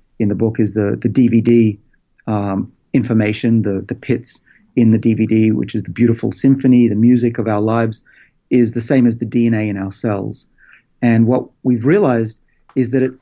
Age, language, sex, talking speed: 40-59, English, male, 185 wpm